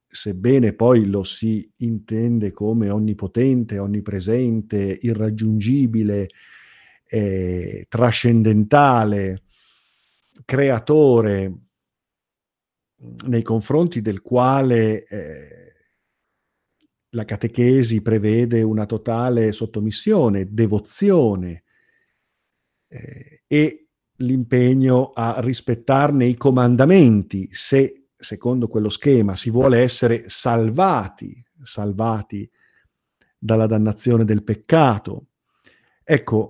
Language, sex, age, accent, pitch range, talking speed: Italian, male, 50-69, native, 105-130 Hz, 75 wpm